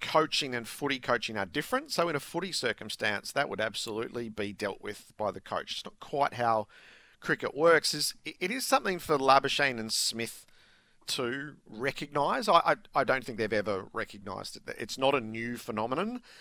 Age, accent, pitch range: 50-69, Australian, 100-125 Hz